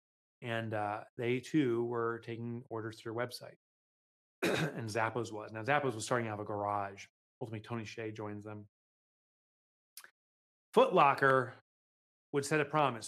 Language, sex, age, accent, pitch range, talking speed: English, male, 30-49, American, 120-155 Hz, 140 wpm